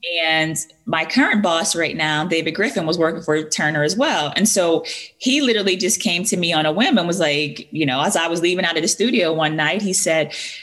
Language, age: English, 20-39